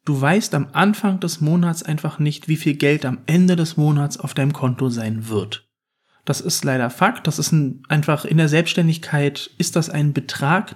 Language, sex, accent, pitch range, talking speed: German, male, German, 140-180 Hz, 190 wpm